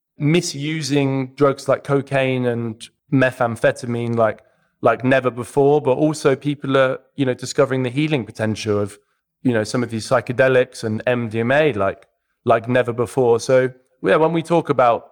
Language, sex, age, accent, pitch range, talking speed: English, male, 20-39, British, 110-135 Hz, 155 wpm